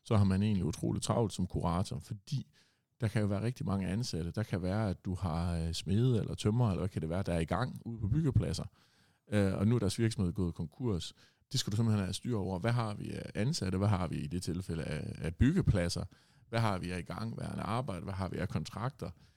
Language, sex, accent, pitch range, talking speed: Danish, male, native, 90-115 Hz, 240 wpm